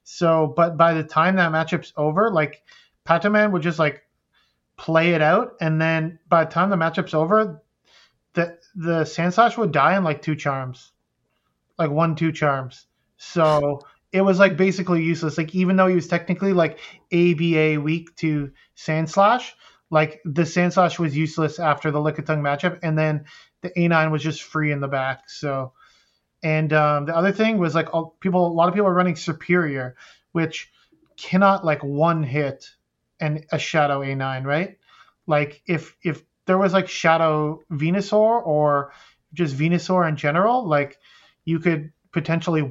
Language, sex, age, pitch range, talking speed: English, male, 30-49, 150-175 Hz, 160 wpm